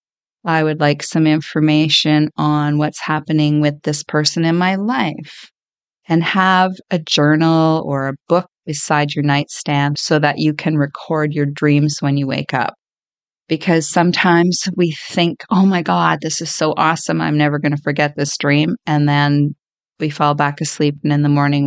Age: 30-49